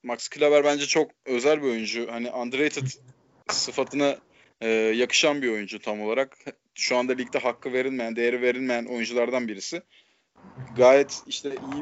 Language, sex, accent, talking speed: Turkish, male, native, 140 wpm